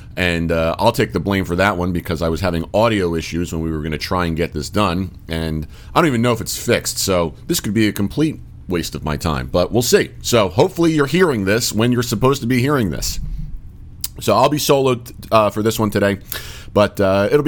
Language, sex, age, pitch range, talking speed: English, male, 40-59, 80-105 Hz, 240 wpm